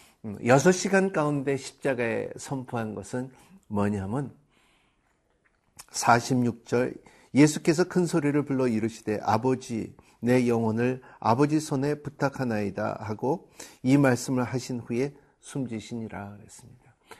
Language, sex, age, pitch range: Korean, male, 50-69, 110-160 Hz